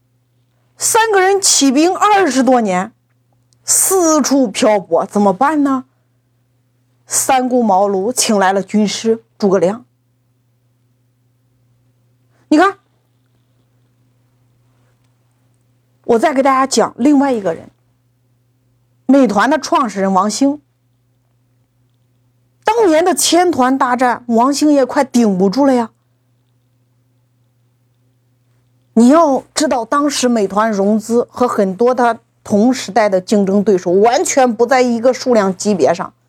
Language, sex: Chinese, female